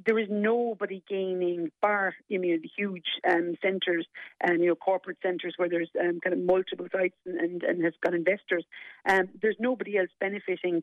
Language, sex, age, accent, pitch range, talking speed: English, female, 40-59, Irish, 175-200 Hz, 195 wpm